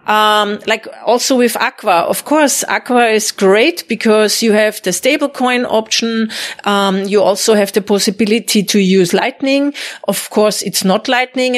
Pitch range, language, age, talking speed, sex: 195-240 Hz, English, 40-59, 160 wpm, female